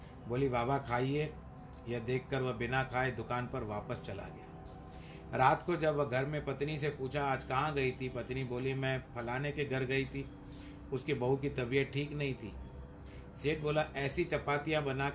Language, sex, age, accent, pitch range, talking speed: Hindi, male, 50-69, native, 120-145 Hz, 180 wpm